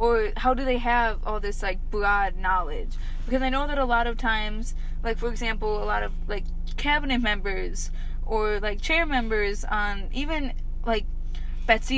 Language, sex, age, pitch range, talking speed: English, female, 20-39, 205-240 Hz, 180 wpm